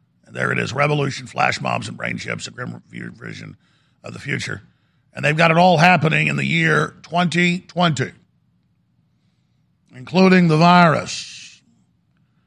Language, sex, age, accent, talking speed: English, male, 50-69, American, 135 wpm